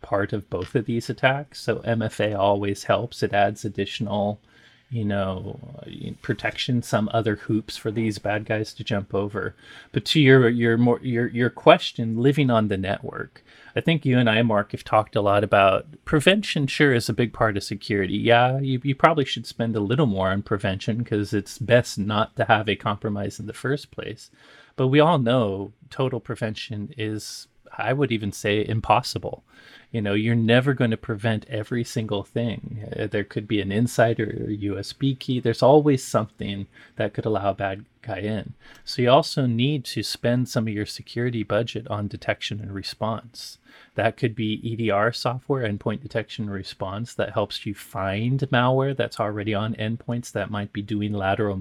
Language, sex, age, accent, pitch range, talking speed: English, male, 30-49, American, 105-120 Hz, 185 wpm